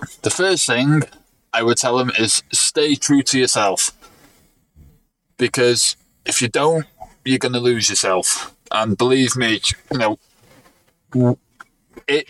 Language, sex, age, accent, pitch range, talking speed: English, male, 20-39, British, 110-130 Hz, 125 wpm